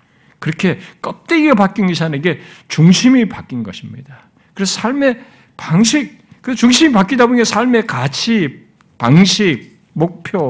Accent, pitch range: native, 125-185 Hz